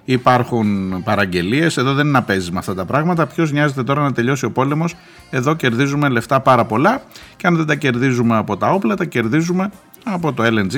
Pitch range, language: 100-145 Hz, Greek